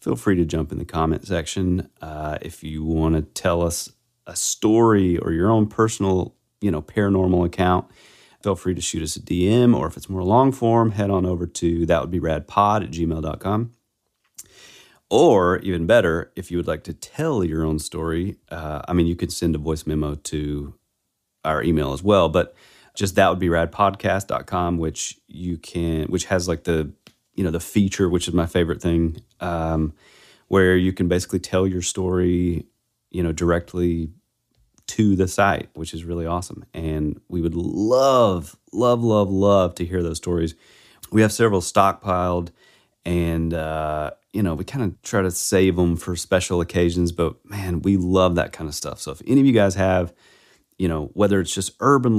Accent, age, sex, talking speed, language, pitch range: American, 40-59, male, 185 wpm, English, 85-95 Hz